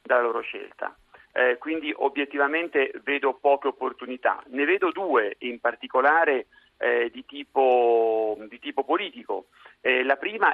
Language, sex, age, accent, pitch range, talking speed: Italian, male, 40-59, native, 125-145 Hz, 125 wpm